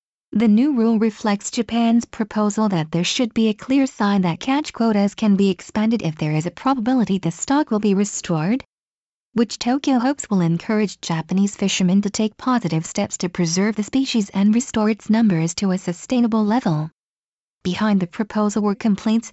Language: English